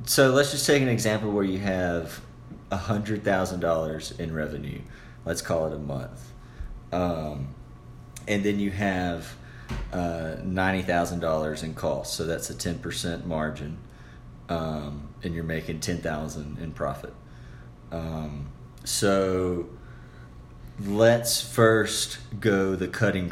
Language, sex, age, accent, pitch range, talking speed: English, male, 30-49, American, 80-95 Hz, 115 wpm